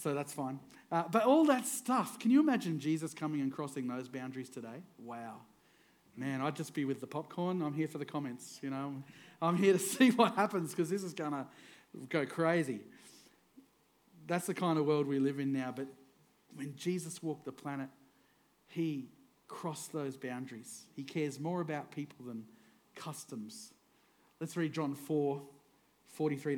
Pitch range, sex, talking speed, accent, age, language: 140-190 Hz, male, 175 wpm, Australian, 40-59, English